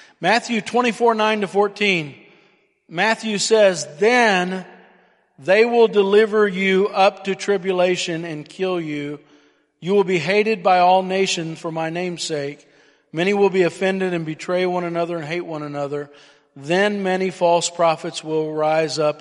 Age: 40-59